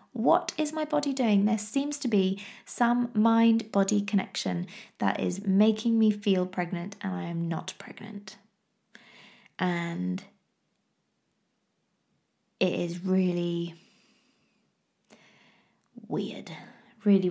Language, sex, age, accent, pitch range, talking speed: English, female, 20-39, British, 185-220 Hz, 100 wpm